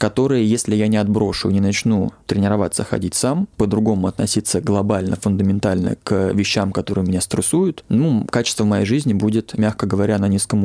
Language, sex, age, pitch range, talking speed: Russian, male, 20-39, 100-120 Hz, 160 wpm